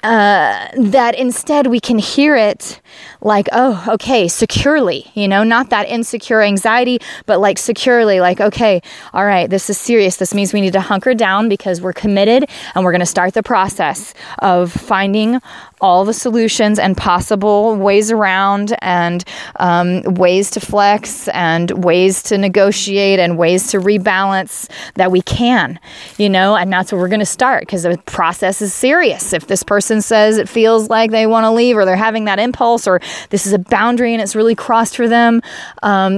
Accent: American